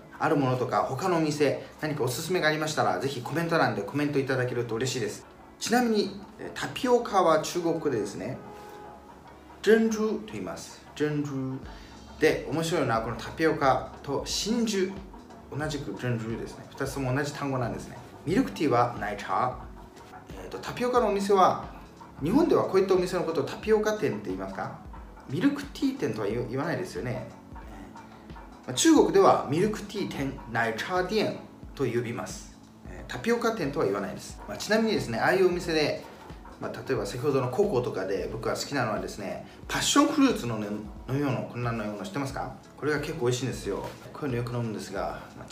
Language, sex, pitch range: Japanese, male, 120-185 Hz